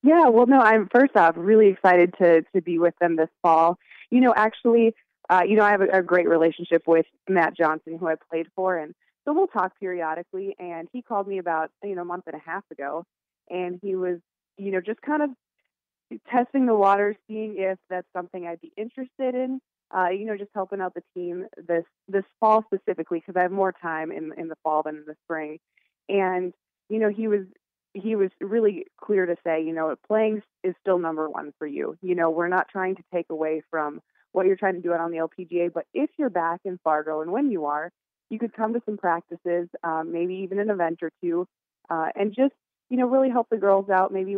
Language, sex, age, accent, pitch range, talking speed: English, female, 20-39, American, 170-215 Hz, 225 wpm